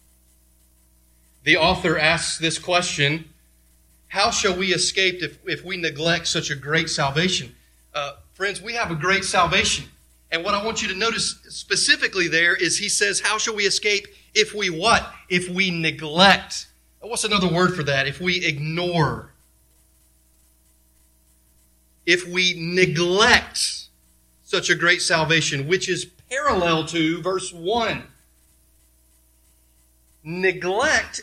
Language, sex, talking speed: English, male, 130 wpm